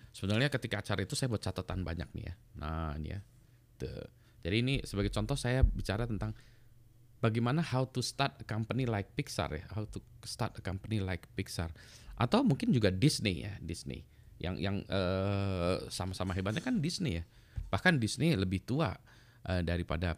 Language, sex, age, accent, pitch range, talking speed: Indonesian, male, 20-39, native, 95-125 Hz, 165 wpm